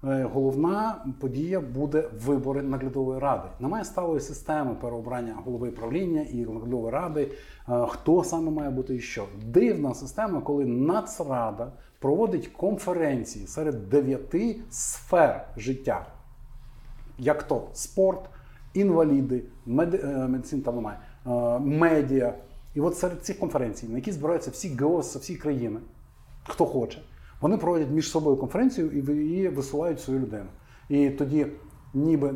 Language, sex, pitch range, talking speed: Ukrainian, male, 130-160 Hz, 125 wpm